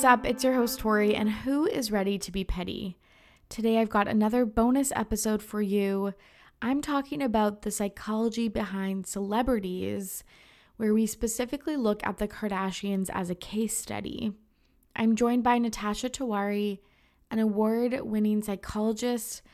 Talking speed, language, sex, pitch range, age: 145 wpm, English, female, 195-225 Hz, 20-39